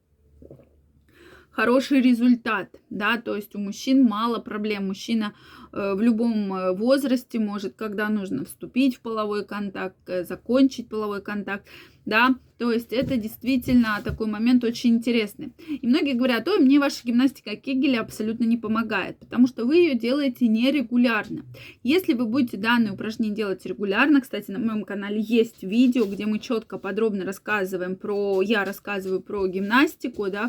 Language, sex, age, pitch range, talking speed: Russian, female, 20-39, 205-260 Hz, 145 wpm